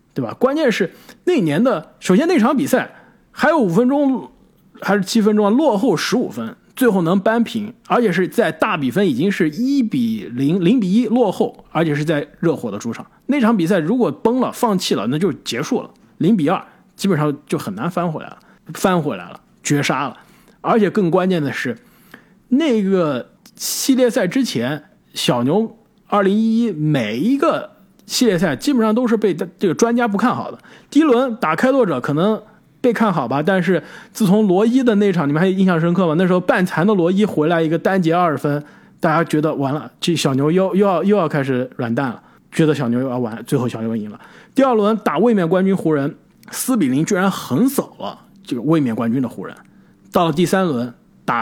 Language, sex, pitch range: Chinese, male, 155-230 Hz